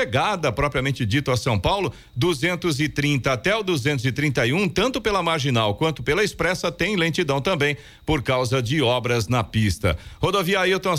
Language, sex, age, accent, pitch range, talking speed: Portuguese, male, 40-59, Brazilian, 130-170 Hz, 145 wpm